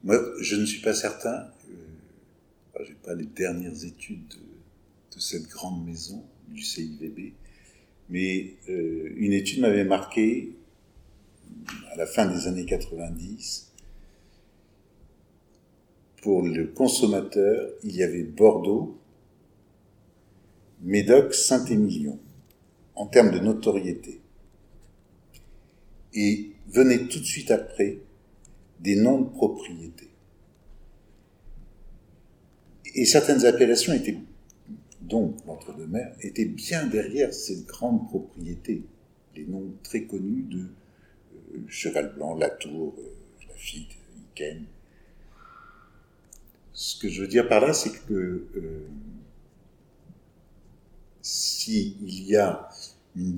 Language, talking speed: English, 105 wpm